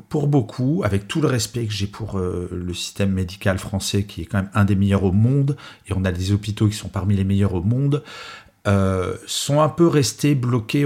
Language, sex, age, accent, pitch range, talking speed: French, male, 40-59, French, 100-140 Hz, 225 wpm